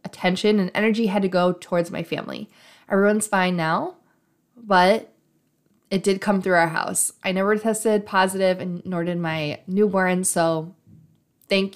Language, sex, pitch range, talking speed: English, female, 180-220 Hz, 155 wpm